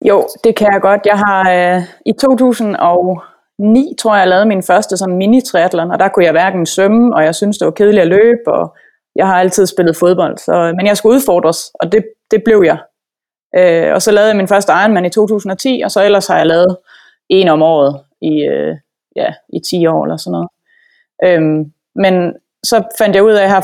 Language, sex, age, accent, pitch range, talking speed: Danish, female, 20-39, native, 170-210 Hz, 210 wpm